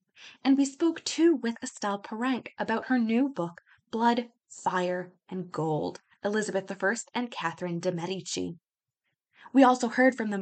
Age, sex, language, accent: 20-39, female, English, American